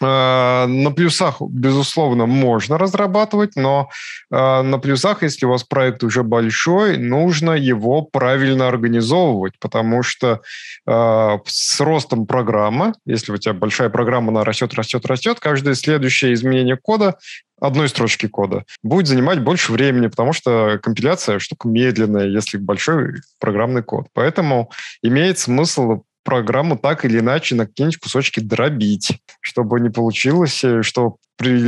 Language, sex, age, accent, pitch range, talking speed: Russian, male, 20-39, native, 115-145 Hz, 130 wpm